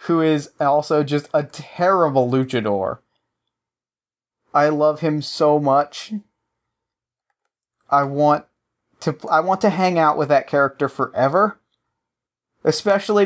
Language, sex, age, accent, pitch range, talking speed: English, male, 30-49, American, 135-170 Hz, 115 wpm